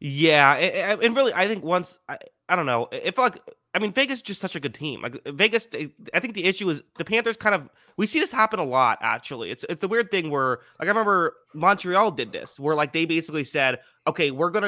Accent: American